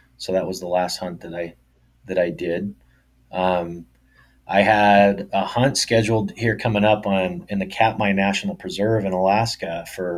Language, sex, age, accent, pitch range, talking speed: English, male, 30-49, American, 90-105 Hz, 170 wpm